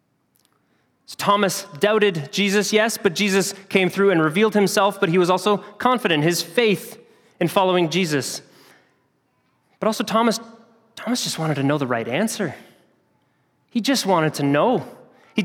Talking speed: 150 wpm